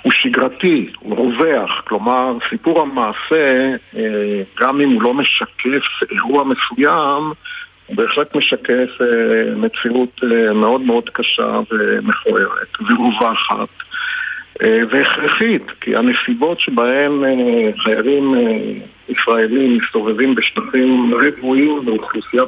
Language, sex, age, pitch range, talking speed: Hebrew, male, 50-69, 120-165 Hz, 90 wpm